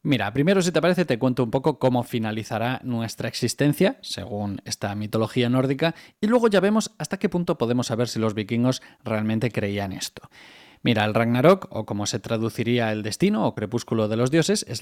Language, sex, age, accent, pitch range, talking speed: Spanish, male, 20-39, Spanish, 110-150 Hz, 190 wpm